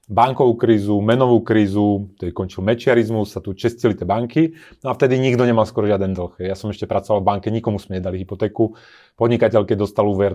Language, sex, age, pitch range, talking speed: Slovak, male, 30-49, 100-120 Hz, 205 wpm